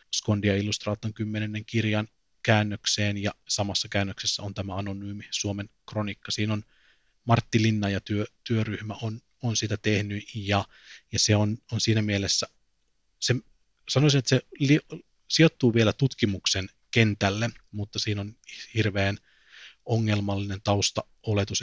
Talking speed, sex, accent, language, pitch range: 130 wpm, male, native, Finnish, 100-110 Hz